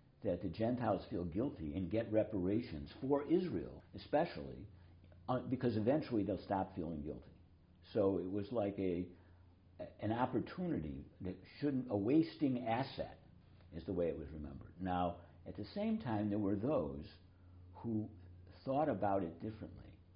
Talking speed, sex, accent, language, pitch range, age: 145 wpm, male, American, English, 90-115 Hz, 60-79